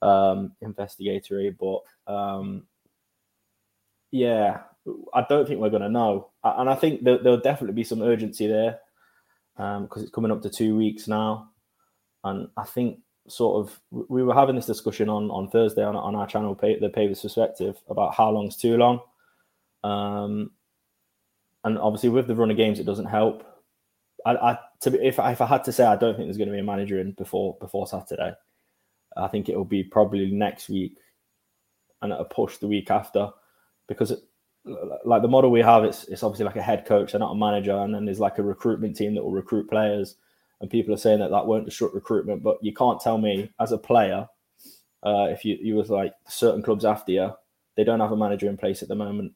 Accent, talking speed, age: British, 205 wpm, 10-29